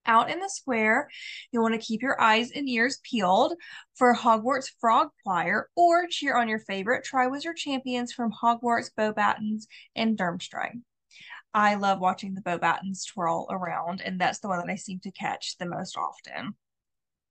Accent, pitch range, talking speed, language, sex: American, 200-260 Hz, 165 wpm, English, female